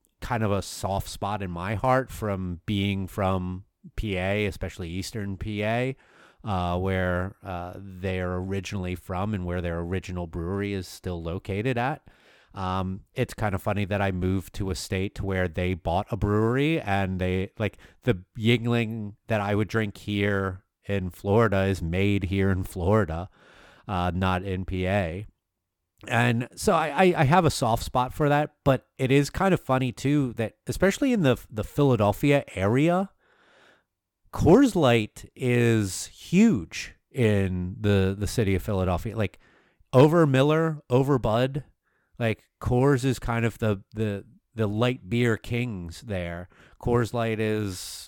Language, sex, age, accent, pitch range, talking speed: English, male, 30-49, American, 95-120 Hz, 150 wpm